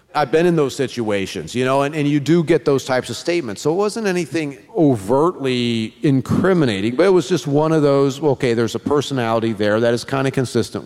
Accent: American